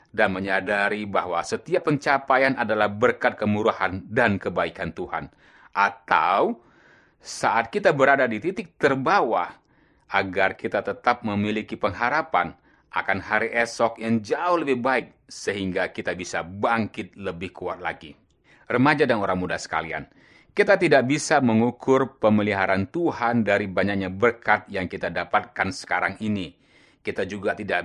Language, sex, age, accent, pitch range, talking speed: Indonesian, male, 30-49, native, 95-130 Hz, 125 wpm